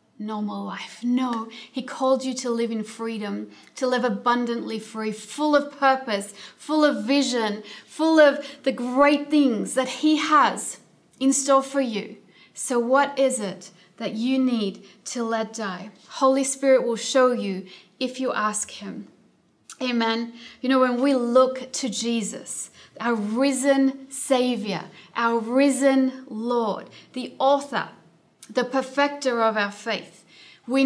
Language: English